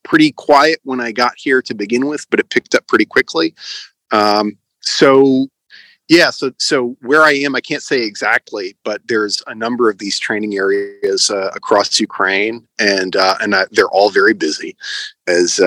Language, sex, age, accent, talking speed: English, male, 30-49, American, 180 wpm